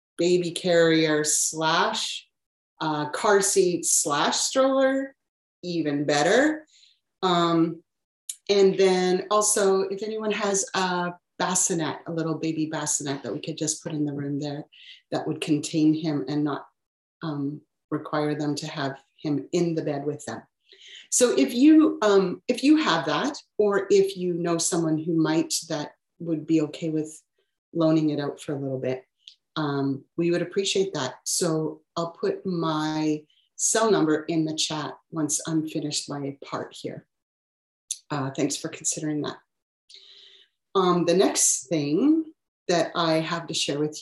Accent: American